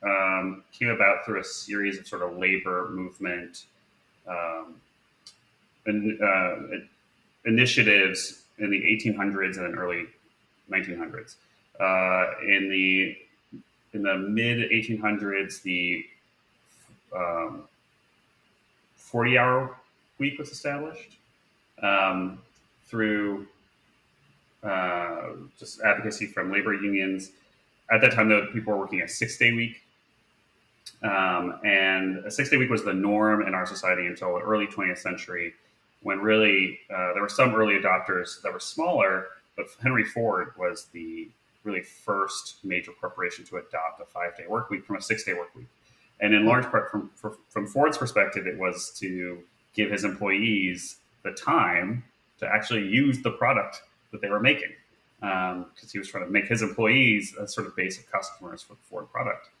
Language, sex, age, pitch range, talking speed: English, male, 30-49, 95-110 Hz, 145 wpm